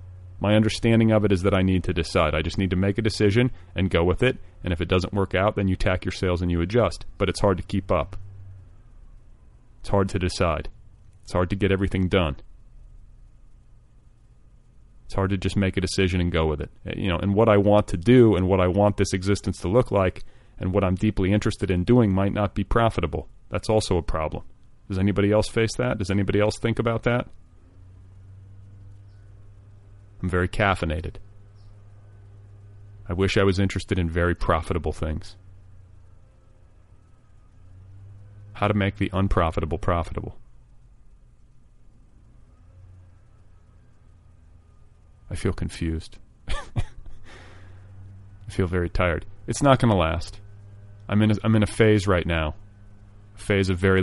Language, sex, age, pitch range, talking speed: English, male, 30-49, 90-100 Hz, 165 wpm